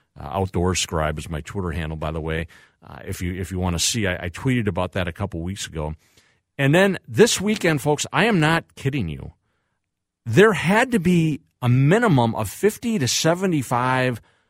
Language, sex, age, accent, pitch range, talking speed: English, male, 50-69, American, 95-155 Hz, 195 wpm